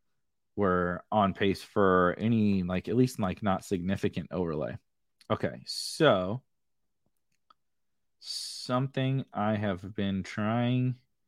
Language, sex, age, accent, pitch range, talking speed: English, male, 30-49, American, 100-125 Hz, 100 wpm